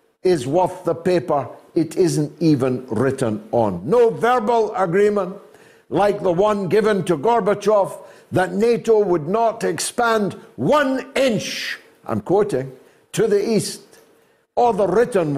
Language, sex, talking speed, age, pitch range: English, male, 130 wpm, 60-79, 125-200 Hz